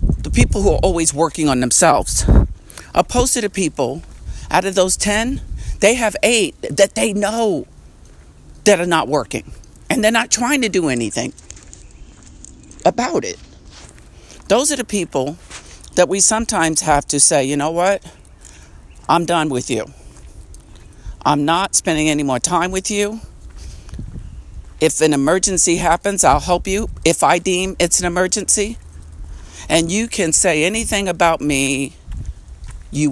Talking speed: 145 wpm